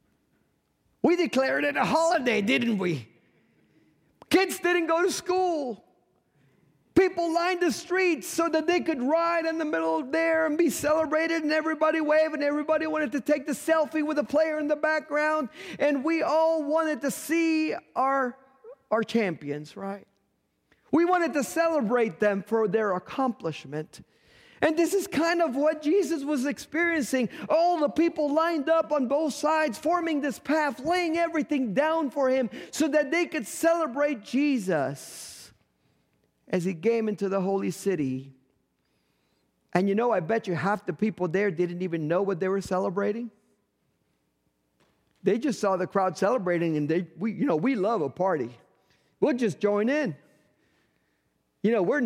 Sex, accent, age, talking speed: male, American, 40-59, 160 wpm